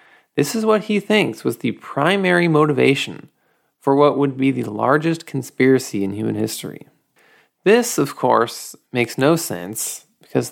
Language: English